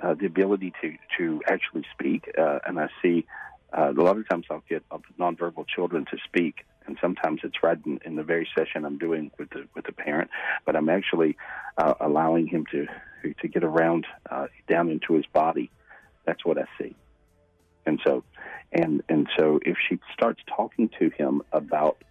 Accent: American